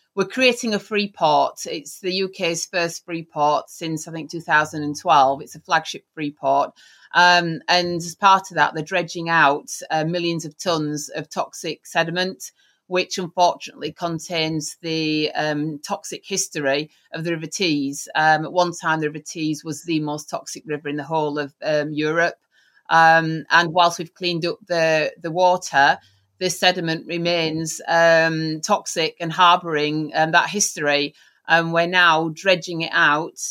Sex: female